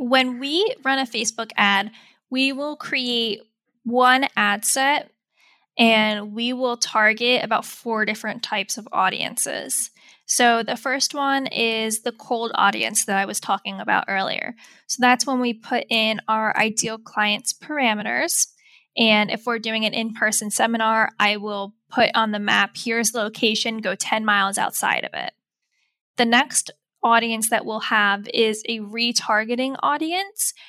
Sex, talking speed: female, 155 wpm